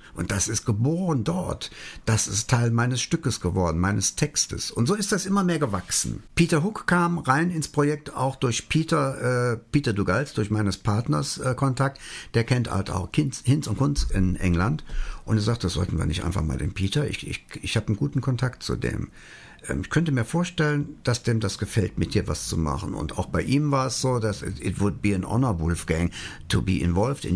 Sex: male